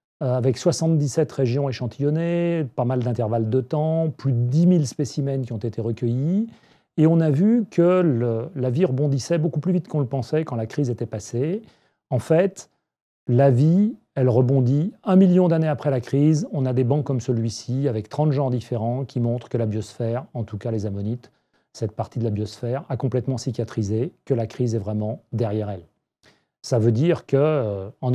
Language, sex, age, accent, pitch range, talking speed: French, male, 40-59, French, 115-150 Hz, 190 wpm